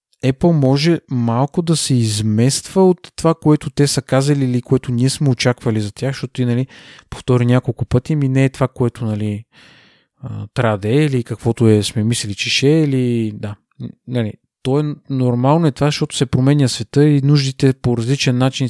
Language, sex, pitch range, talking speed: Bulgarian, male, 115-140 Hz, 185 wpm